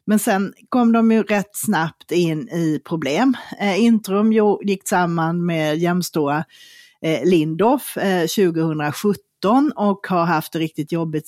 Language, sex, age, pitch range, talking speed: Swedish, female, 30-49, 165-215 Hz, 120 wpm